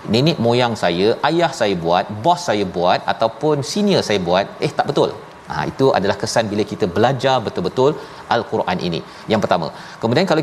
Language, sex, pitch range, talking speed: Malayalam, male, 115-150 Hz, 175 wpm